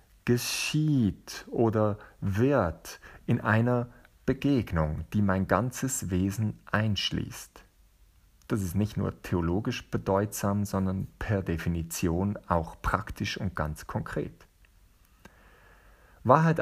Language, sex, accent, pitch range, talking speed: German, male, German, 95-120 Hz, 95 wpm